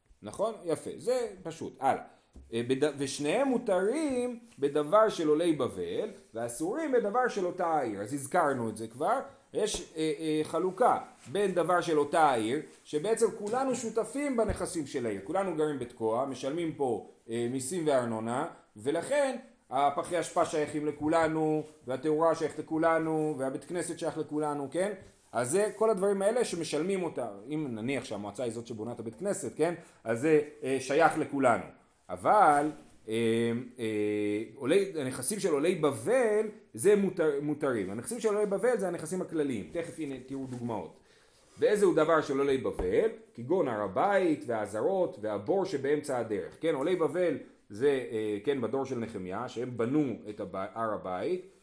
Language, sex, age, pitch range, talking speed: Hebrew, male, 30-49, 135-200 Hz, 145 wpm